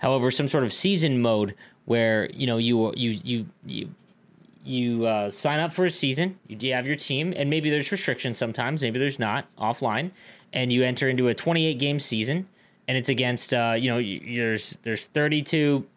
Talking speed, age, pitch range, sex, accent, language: 190 wpm, 20-39, 120-155 Hz, male, American, English